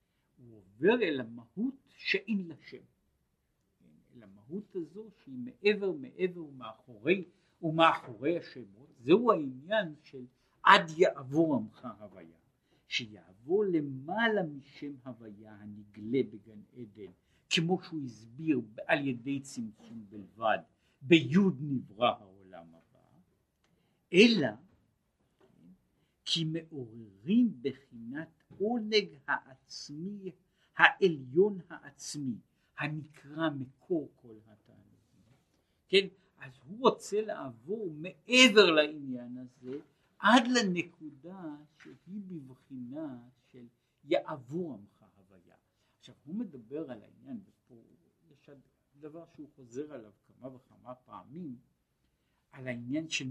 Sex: male